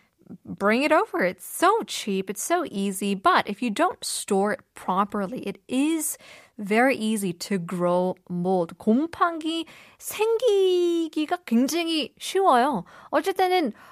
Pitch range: 195-300 Hz